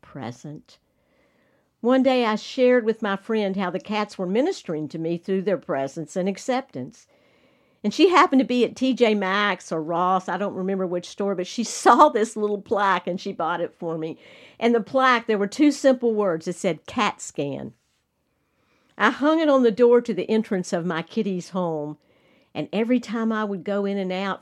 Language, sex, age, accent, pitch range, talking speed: English, female, 50-69, American, 185-235 Hz, 200 wpm